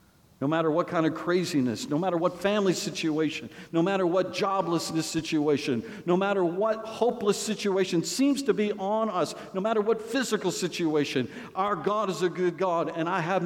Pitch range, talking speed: 125-175 Hz, 180 wpm